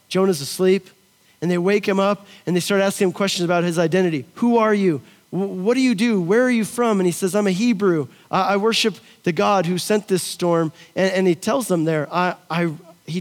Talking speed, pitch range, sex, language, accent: 235 wpm, 160-210 Hz, male, English, American